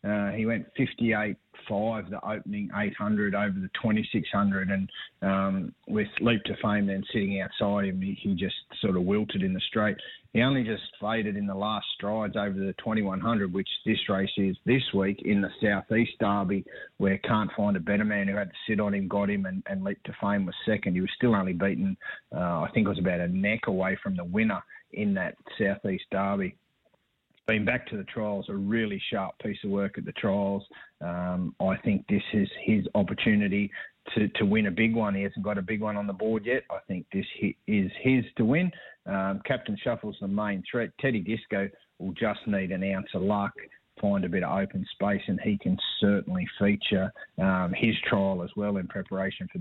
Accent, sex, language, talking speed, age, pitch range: Australian, male, English, 205 wpm, 30-49, 100-130 Hz